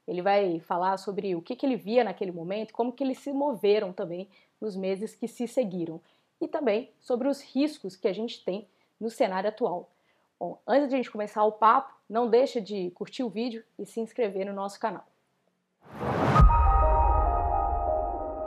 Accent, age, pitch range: Brazilian, 20-39, 190-235 Hz